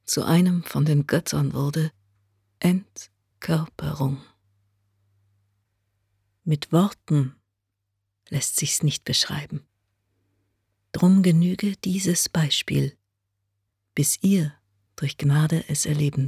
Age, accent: 40-59, German